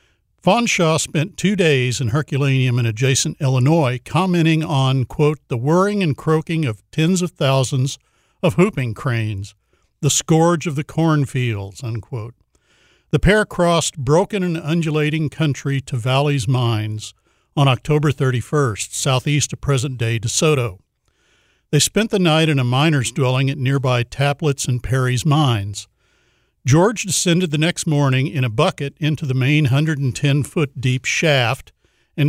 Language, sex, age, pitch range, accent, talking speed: English, male, 60-79, 130-160 Hz, American, 140 wpm